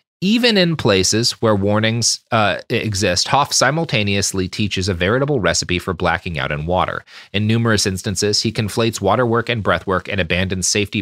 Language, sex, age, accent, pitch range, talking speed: English, male, 30-49, American, 90-120 Hz, 165 wpm